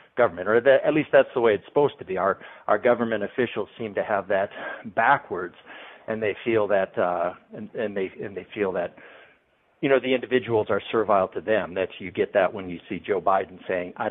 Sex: male